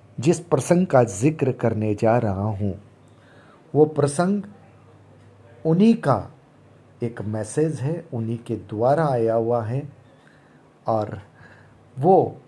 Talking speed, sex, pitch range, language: 110 wpm, male, 115-150 Hz, Hindi